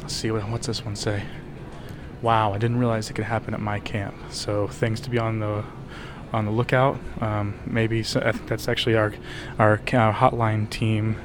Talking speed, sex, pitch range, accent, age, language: 195 wpm, male, 115-130 Hz, American, 20-39, English